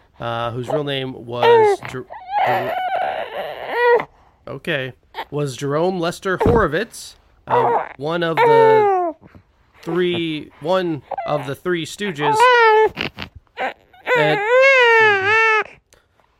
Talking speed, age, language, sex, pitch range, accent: 75 wpm, 30-49, English, male, 125-195 Hz, American